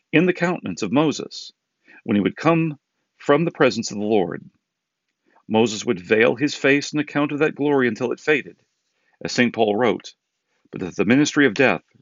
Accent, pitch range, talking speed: American, 120-155 Hz, 190 wpm